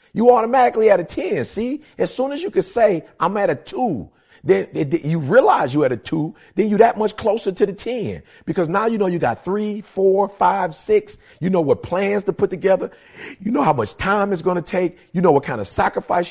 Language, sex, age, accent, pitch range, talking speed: English, male, 40-59, American, 145-200 Hz, 230 wpm